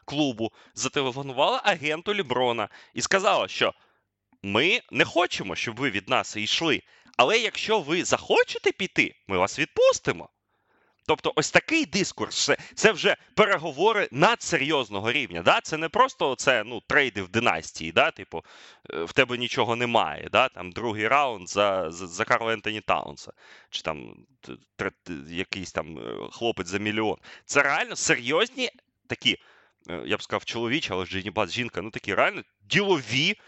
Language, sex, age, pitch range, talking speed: Ukrainian, male, 30-49, 115-170 Hz, 145 wpm